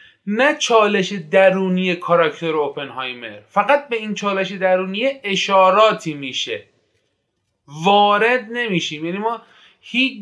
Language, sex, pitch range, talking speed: Persian, male, 175-220 Hz, 100 wpm